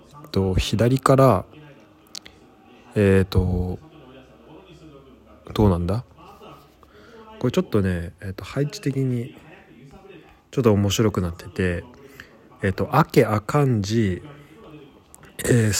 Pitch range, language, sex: 95-125 Hz, Japanese, male